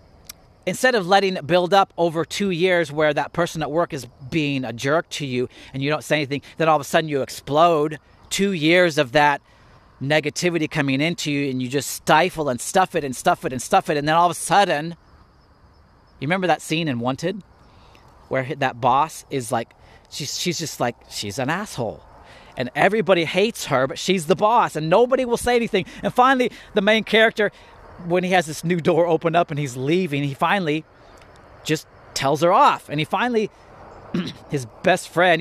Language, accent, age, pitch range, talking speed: English, American, 30-49, 130-180 Hz, 200 wpm